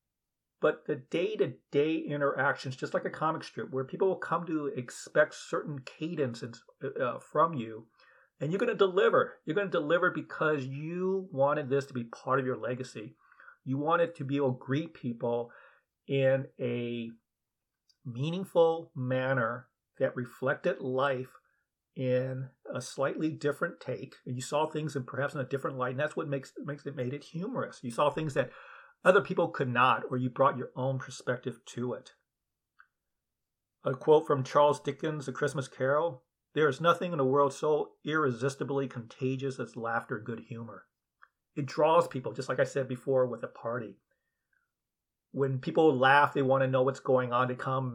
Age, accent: 50-69, American